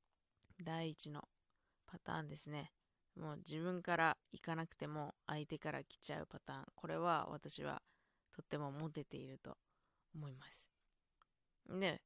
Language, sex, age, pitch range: Japanese, female, 20-39, 150-215 Hz